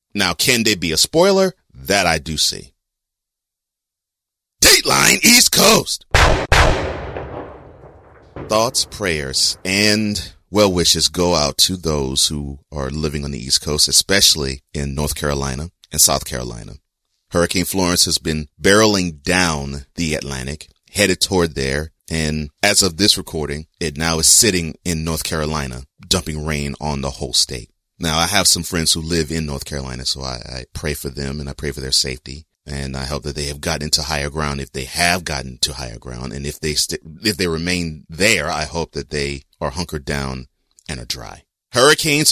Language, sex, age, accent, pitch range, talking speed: English, male, 30-49, American, 70-90 Hz, 175 wpm